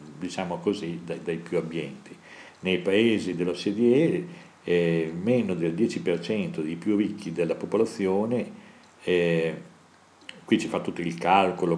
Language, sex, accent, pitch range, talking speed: Italian, male, native, 85-105 Hz, 125 wpm